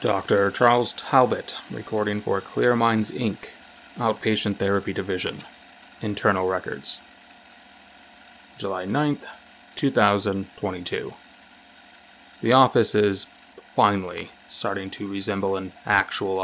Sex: male